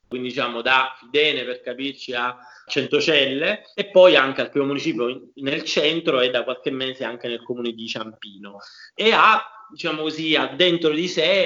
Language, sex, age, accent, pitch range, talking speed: Italian, male, 30-49, native, 125-160 Hz, 180 wpm